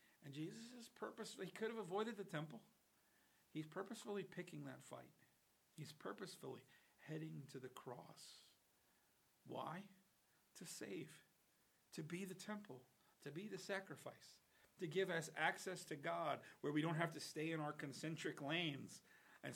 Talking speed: 150 wpm